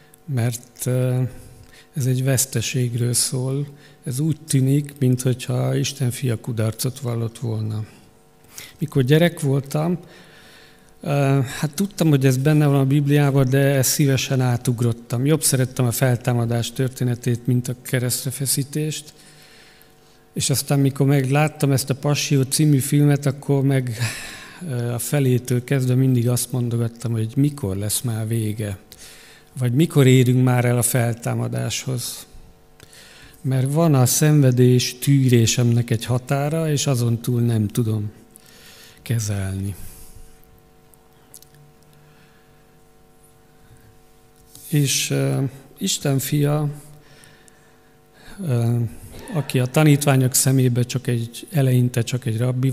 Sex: male